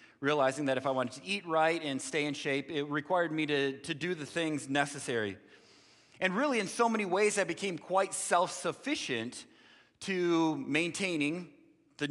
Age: 30-49